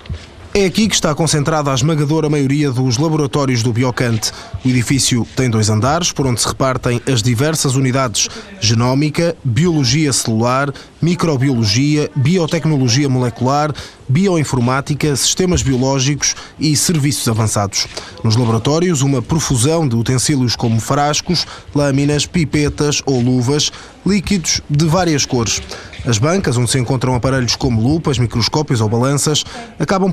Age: 20-39